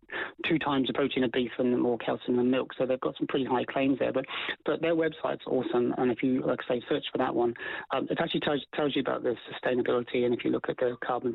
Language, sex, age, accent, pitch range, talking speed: English, male, 30-49, British, 125-150 Hz, 255 wpm